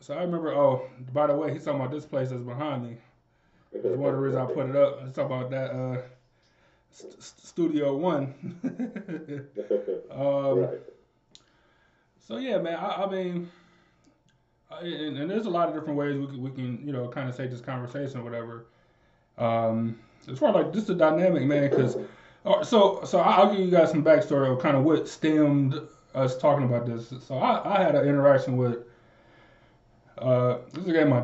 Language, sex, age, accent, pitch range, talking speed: English, male, 20-39, American, 125-170 Hz, 190 wpm